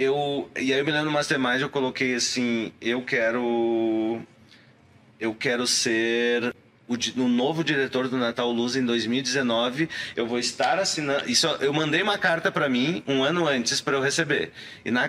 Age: 30-49